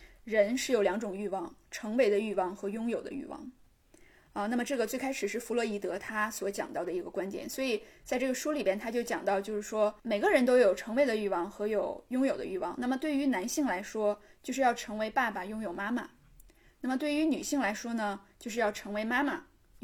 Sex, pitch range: female, 210-270 Hz